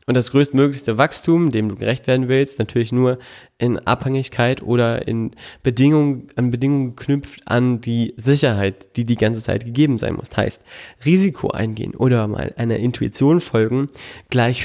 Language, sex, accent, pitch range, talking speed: German, male, German, 115-140 Hz, 160 wpm